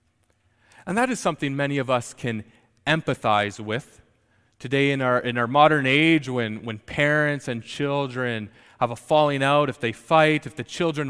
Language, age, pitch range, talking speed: English, 30-49, 120-170 Hz, 175 wpm